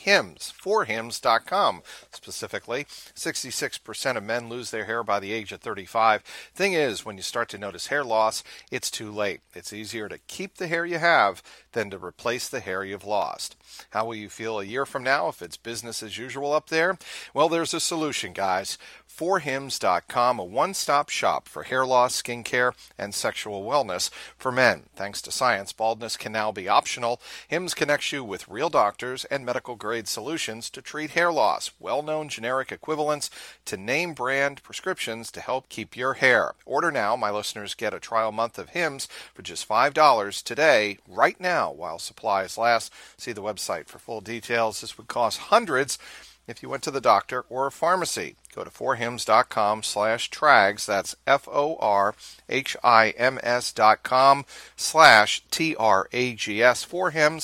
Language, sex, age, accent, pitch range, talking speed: English, male, 40-59, American, 110-140 Hz, 160 wpm